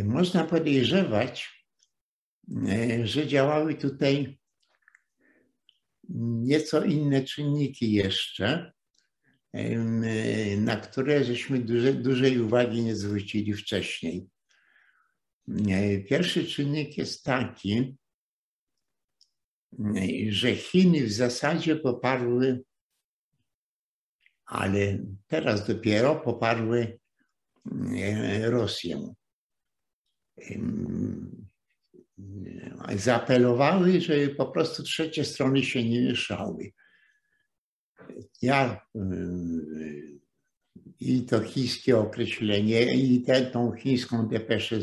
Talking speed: 65 wpm